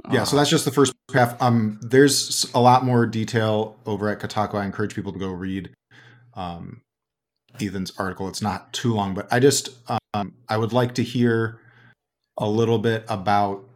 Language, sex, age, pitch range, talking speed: English, male, 30-49, 100-120 Hz, 185 wpm